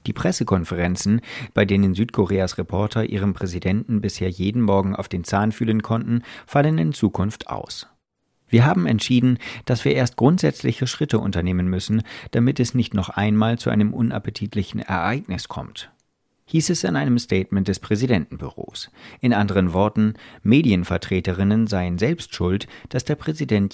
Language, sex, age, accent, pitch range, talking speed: German, male, 50-69, German, 95-120 Hz, 145 wpm